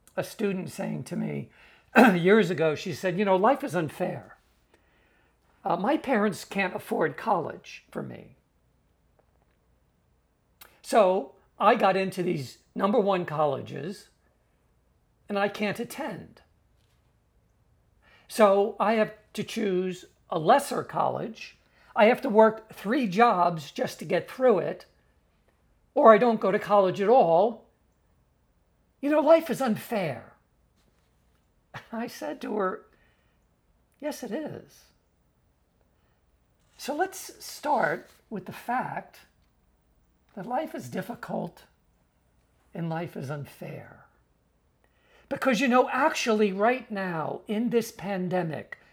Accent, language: American, English